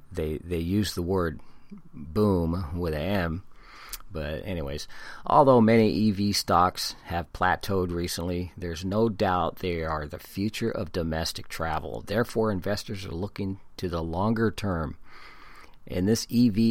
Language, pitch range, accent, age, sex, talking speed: English, 85-105 Hz, American, 50-69, male, 140 wpm